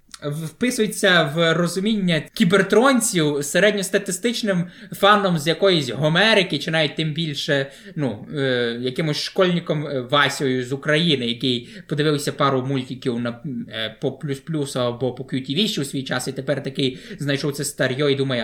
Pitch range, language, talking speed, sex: 140-195 Hz, Ukrainian, 135 wpm, male